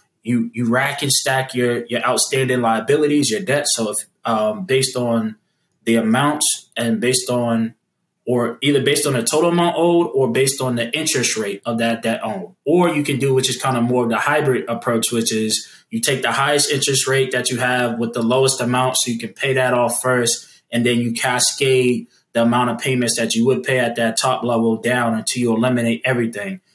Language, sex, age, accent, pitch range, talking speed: English, male, 20-39, American, 115-140 Hz, 210 wpm